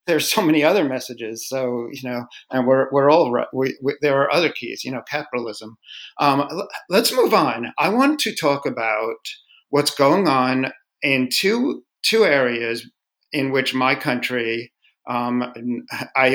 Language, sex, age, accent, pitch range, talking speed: English, male, 50-69, American, 125-140 Hz, 165 wpm